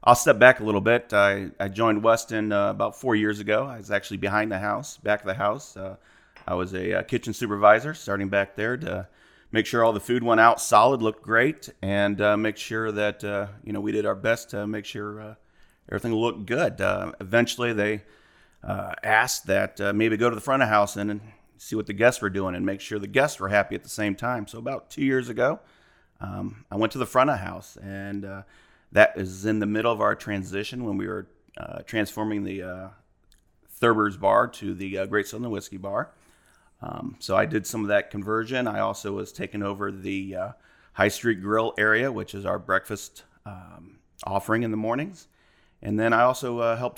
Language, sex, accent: English, male, American